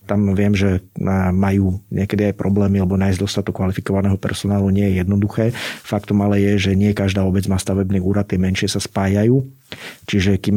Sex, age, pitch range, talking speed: male, 40-59, 95-110 Hz, 170 wpm